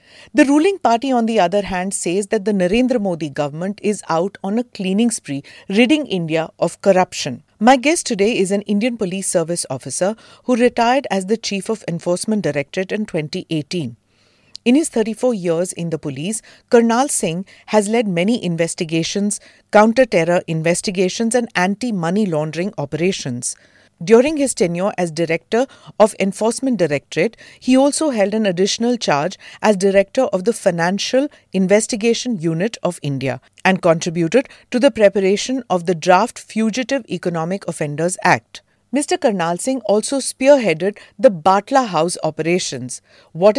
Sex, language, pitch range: female, English, 175-235 Hz